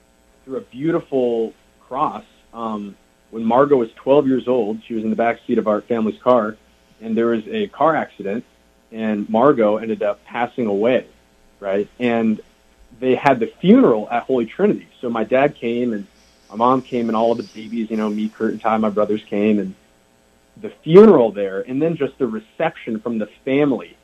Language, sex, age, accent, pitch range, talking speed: English, male, 30-49, American, 100-130 Hz, 185 wpm